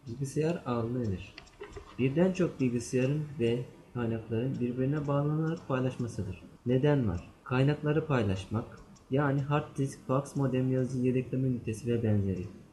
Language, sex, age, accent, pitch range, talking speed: English, male, 30-49, Turkish, 120-150 Hz, 115 wpm